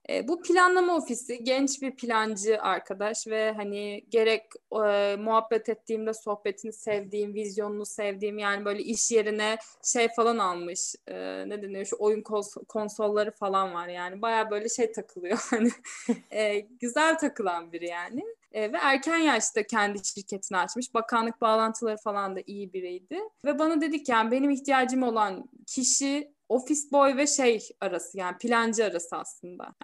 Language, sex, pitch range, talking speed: Turkish, female, 205-245 Hz, 150 wpm